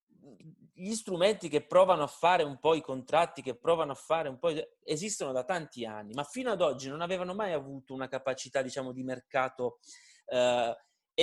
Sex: male